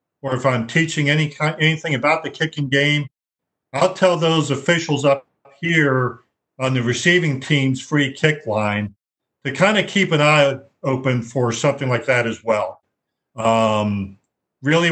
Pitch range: 125-150 Hz